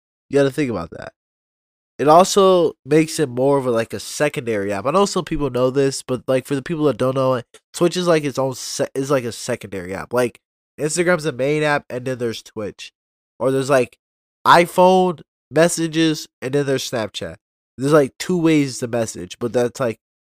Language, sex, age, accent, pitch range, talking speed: English, male, 20-39, American, 115-155 Hz, 210 wpm